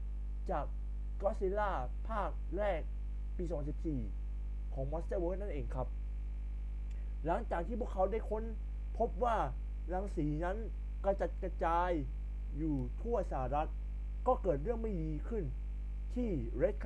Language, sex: Thai, male